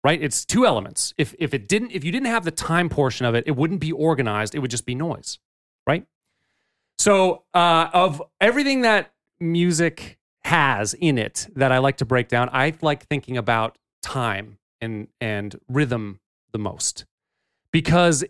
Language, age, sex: English, 30-49, male